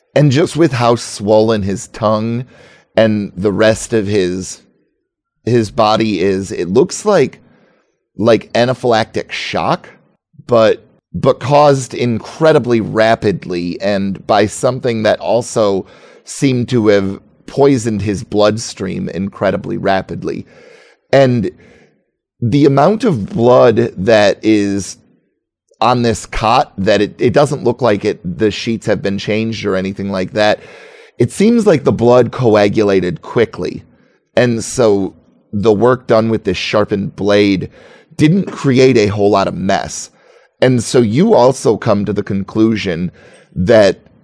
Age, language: 30-49, English